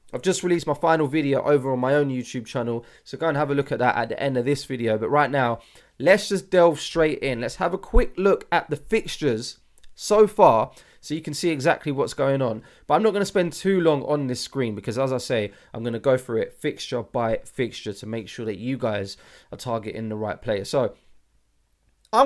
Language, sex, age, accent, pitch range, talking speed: English, male, 20-39, British, 125-180 Hz, 240 wpm